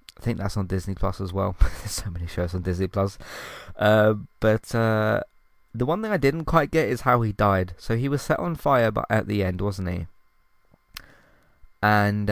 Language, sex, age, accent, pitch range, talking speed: English, male, 20-39, British, 95-120 Hz, 205 wpm